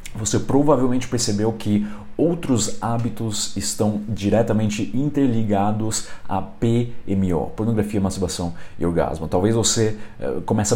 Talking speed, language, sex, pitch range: 100 wpm, Portuguese, male, 90-110 Hz